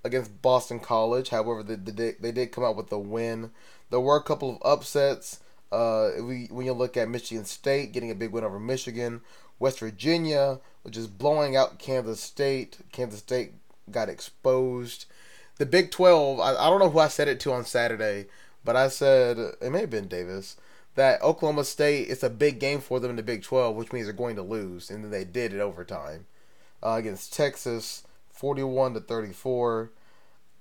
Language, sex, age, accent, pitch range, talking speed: English, male, 20-39, American, 110-135 Hz, 185 wpm